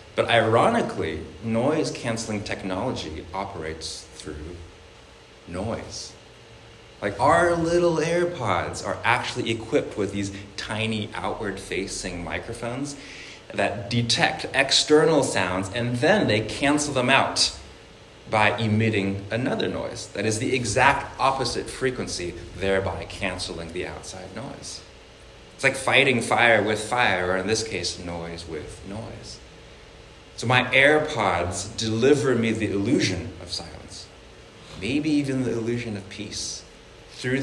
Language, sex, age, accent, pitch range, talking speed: English, male, 20-39, American, 95-120 Hz, 115 wpm